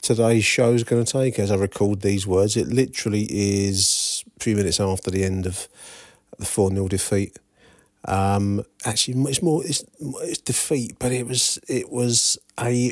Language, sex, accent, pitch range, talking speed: English, male, British, 95-115 Hz, 170 wpm